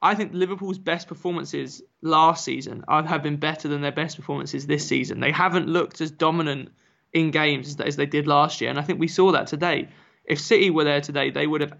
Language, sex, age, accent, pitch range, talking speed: English, male, 20-39, British, 150-180 Hz, 220 wpm